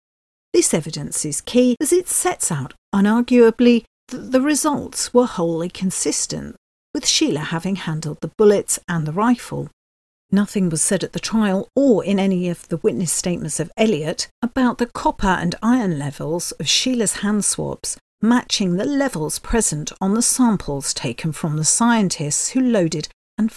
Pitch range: 165-240 Hz